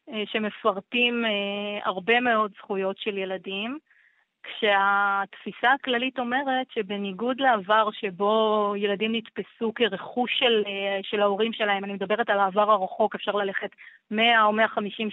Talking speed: 115 wpm